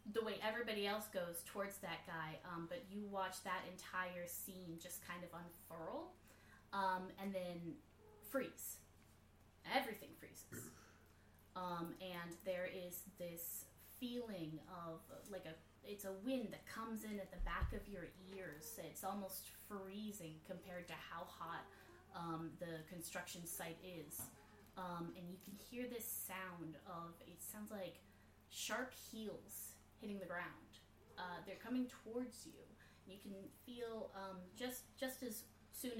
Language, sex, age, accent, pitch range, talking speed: English, female, 20-39, American, 170-205 Hz, 145 wpm